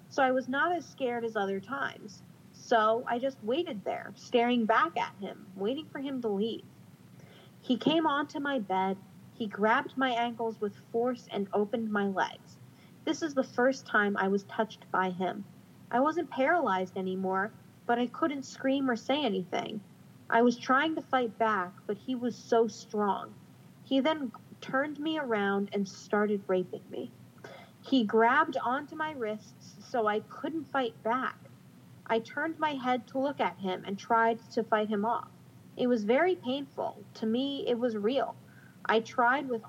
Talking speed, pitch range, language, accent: 175 wpm, 215-265 Hz, English, American